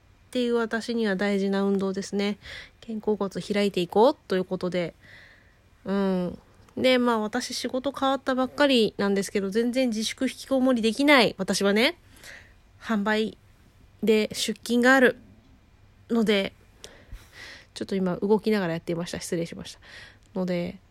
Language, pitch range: Japanese, 190-255 Hz